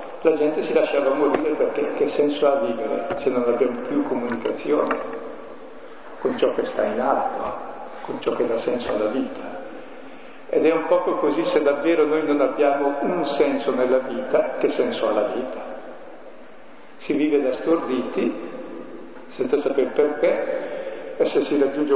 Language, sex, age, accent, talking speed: Italian, male, 50-69, native, 160 wpm